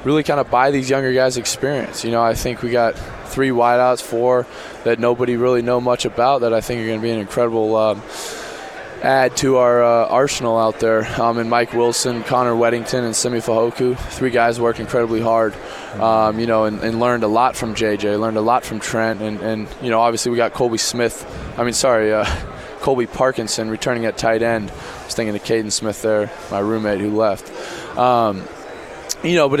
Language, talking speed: English, 210 wpm